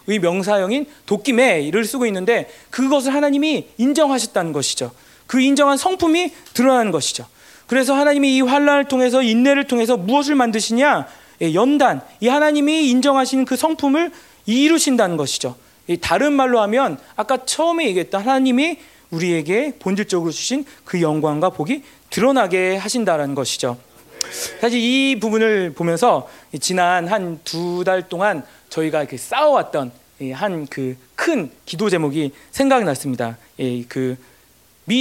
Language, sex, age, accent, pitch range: Korean, male, 40-59, native, 165-265 Hz